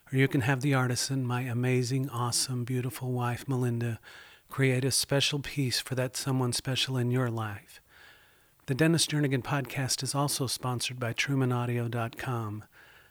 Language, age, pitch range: English, 40-59, 120-140 Hz